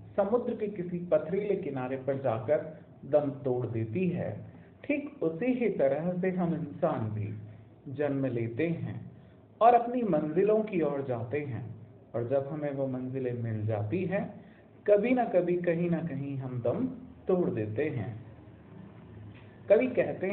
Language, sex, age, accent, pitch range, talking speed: Hindi, male, 50-69, native, 130-195 Hz, 150 wpm